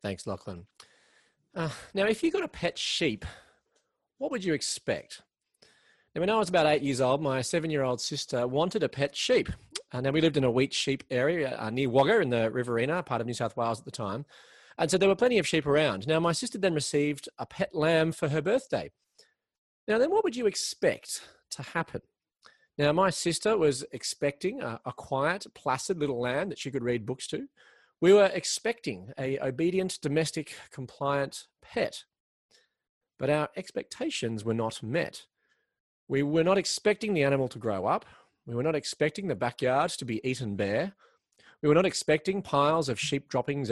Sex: male